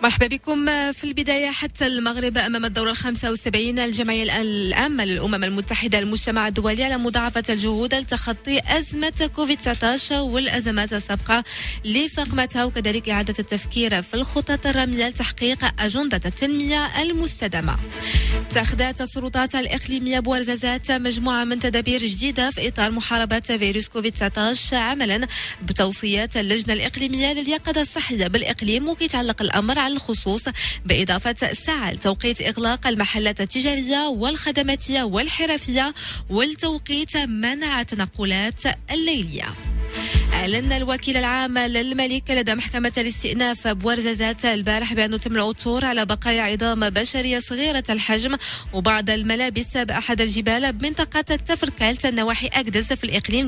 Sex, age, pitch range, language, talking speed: female, 20-39, 220-275 Hz, French, 115 wpm